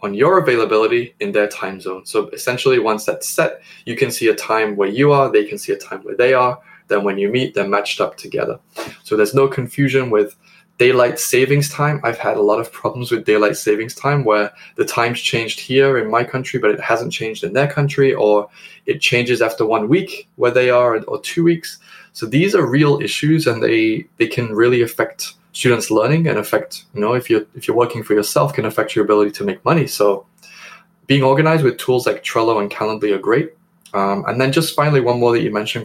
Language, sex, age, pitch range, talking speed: English, male, 10-29, 105-145 Hz, 220 wpm